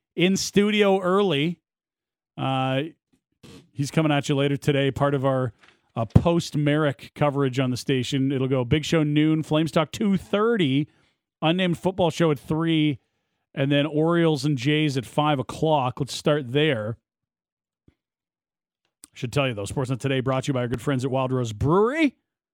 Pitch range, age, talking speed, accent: 135-170 Hz, 40-59, 160 wpm, American